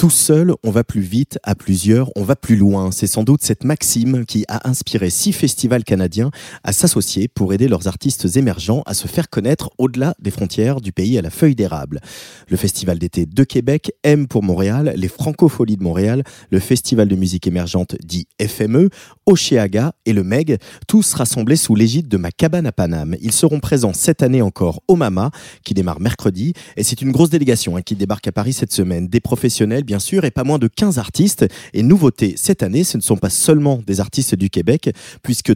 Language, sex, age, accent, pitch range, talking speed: French, male, 30-49, French, 100-150 Hz, 205 wpm